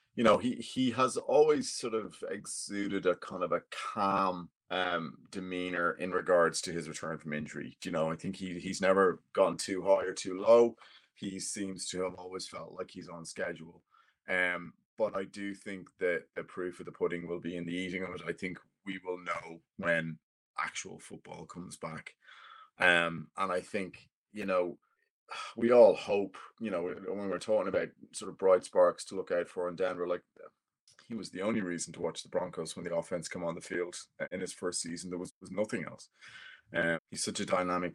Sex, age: male, 30-49